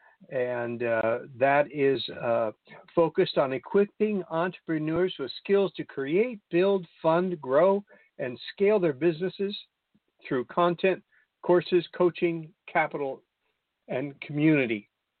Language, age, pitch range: English, 60-79, 130-175 Hz